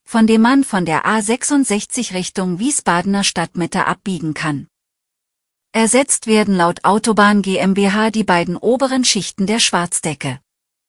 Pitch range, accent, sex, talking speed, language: 180-230 Hz, German, female, 120 wpm, German